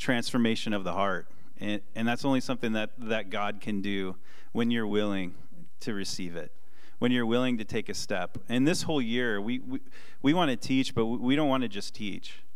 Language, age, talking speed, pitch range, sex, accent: English, 30-49, 210 wpm, 105-130 Hz, male, American